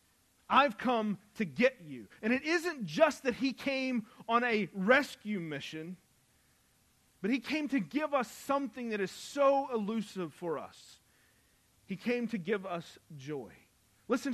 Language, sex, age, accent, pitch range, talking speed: English, male, 40-59, American, 200-255 Hz, 150 wpm